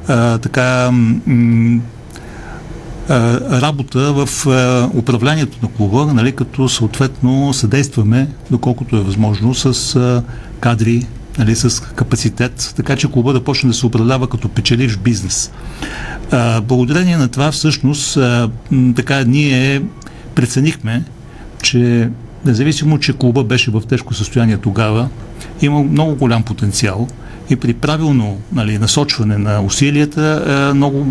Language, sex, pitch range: Bulgarian, male, 115-135 Hz